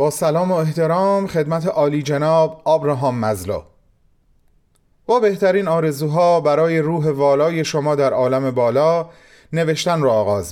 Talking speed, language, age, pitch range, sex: 125 wpm, Persian, 30-49, 115-160 Hz, male